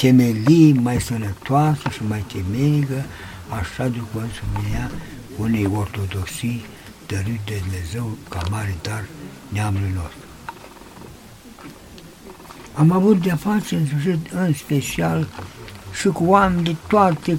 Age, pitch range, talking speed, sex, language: 60-79, 100-150 Hz, 105 wpm, male, Romanian